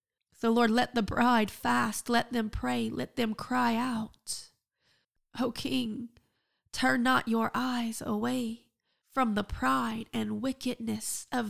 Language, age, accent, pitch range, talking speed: English, 30-49, American, 215-245 Hz, 135 wpm